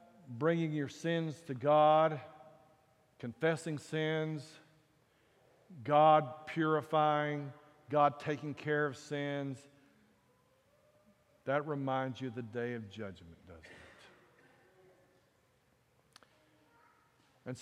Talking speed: 85 wpm